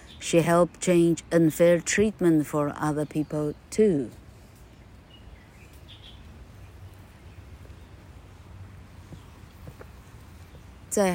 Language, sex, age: Chinese, female, 50-69